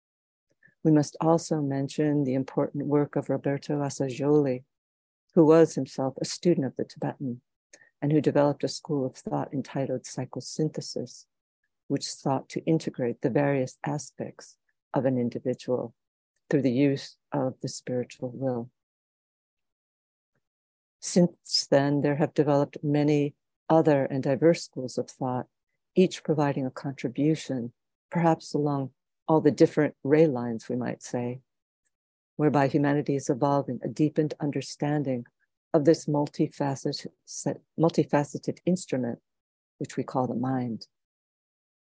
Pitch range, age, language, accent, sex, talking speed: 130-155 Hz, 60-79, English, American, female, 125 wpm